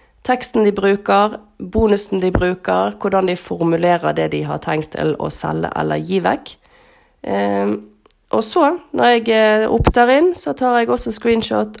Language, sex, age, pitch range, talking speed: English, female, 30-49, 180-240 Hz, 135 wpm